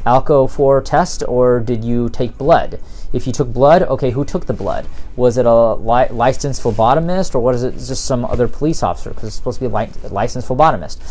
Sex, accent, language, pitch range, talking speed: male, American, English, 115-135 Hz, 220 wpm